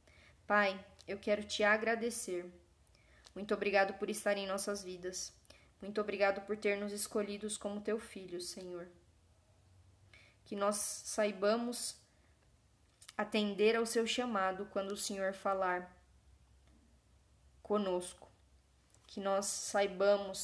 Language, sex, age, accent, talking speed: Portuguese, female, 10-29, Brazilian, 110 wpm